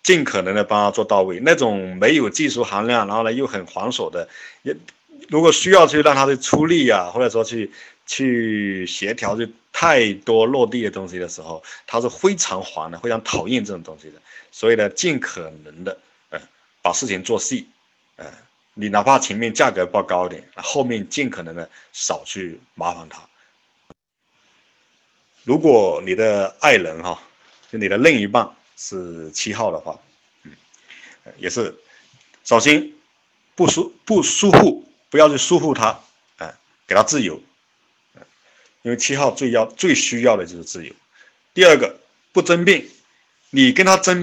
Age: 50-69